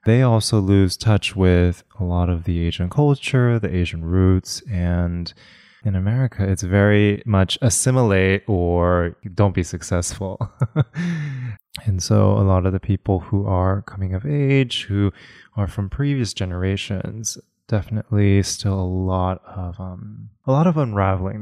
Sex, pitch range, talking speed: male, 90-115 Hz, 145 wpm